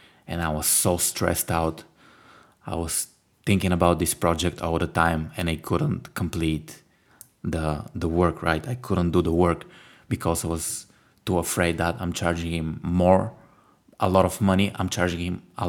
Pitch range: 85-95 Hz